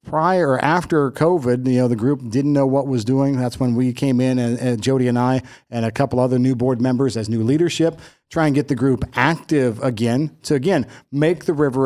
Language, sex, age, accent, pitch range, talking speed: English, male, 50-69, American, 120-150 Hz, 225 wpm